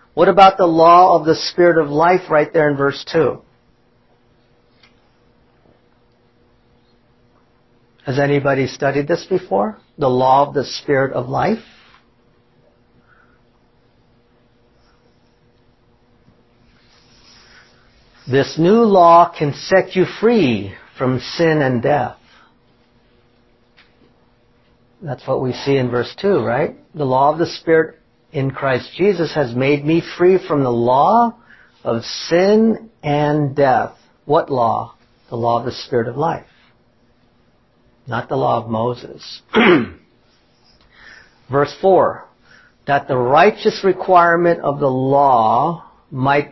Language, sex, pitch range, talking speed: English, male, 120-165 Hz, 115 wpm